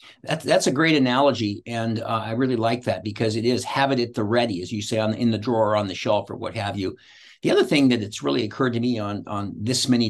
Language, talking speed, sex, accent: English, 275 wpm, male, American